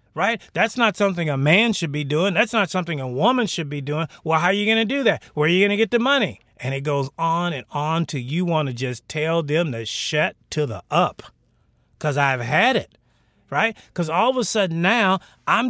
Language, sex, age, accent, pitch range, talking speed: English, male, 30-49, American, 155-220 Hz, 240 wpm